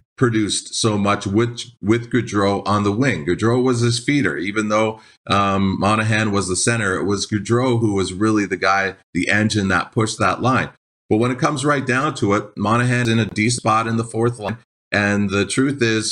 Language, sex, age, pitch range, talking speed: English, male, 30-49, 100-115 Hz, 205 wpm